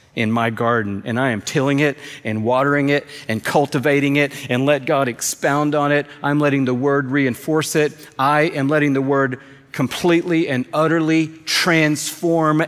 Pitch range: 125-150 Hz